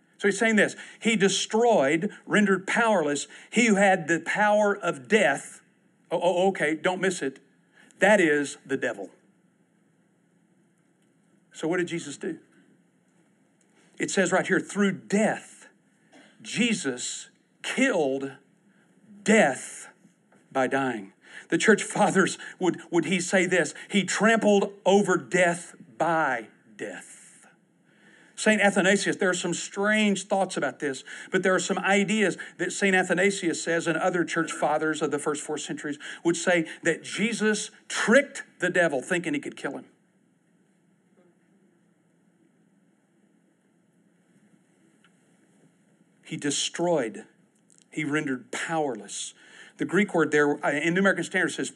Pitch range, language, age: 160-200 Hz, English, 50-69